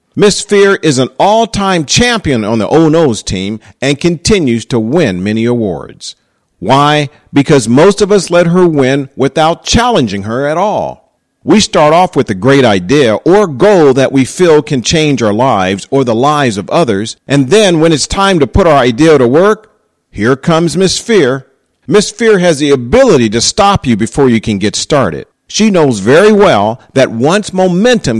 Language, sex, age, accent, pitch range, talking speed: English, male, 50-69, American, 120-185 Hz, 180 wpm